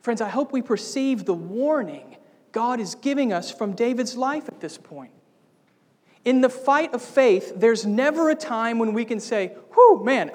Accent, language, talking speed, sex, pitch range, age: American, English, 185 wpm, male, 200-265 Hz, 40-59